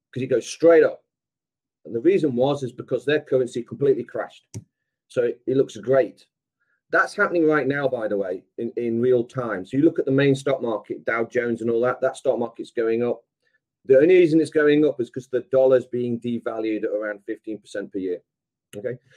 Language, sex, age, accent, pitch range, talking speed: English, male, 40-59, British, 120-195 Hz, 205 wpm